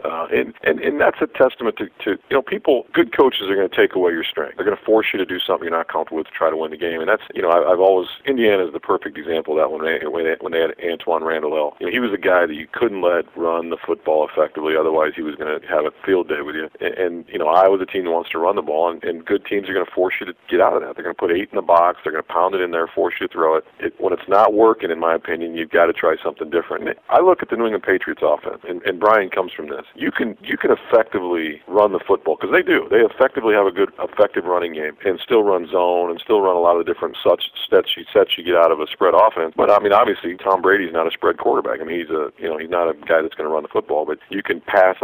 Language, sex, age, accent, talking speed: English, male, 40-59, American, 305 wpm